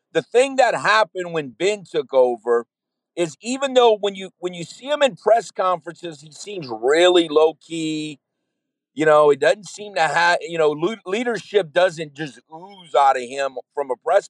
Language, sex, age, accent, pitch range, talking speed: English, male, 50-69, American, 145-215 Hz, 185 wpm